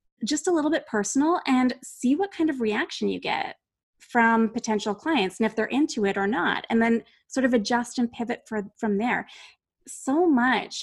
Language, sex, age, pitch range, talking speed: English, female, 20-39, 205-245 Hz, 195 wpm